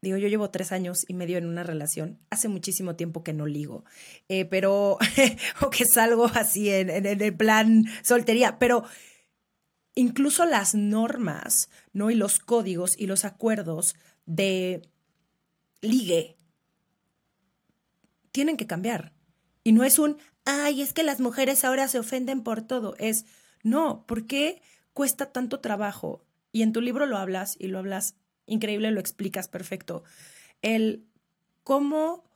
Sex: female